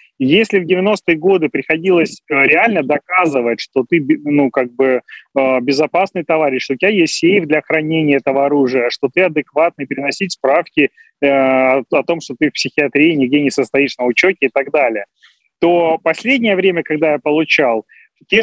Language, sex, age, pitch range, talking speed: Russian, male, 30-49, 155-200 Hz, 160 wpm